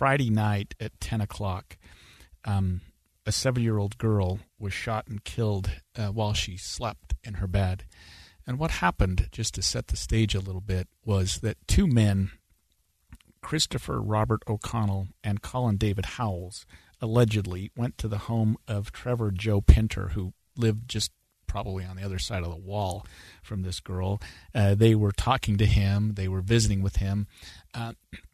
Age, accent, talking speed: 40-59, American, 160 wpm